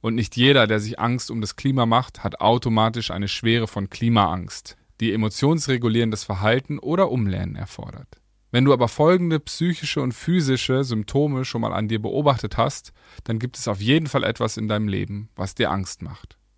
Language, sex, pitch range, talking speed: German, male, 105-135 Hz, 180 wpm